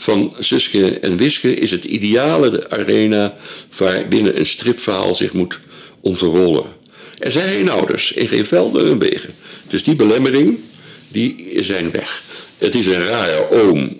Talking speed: 145 wpm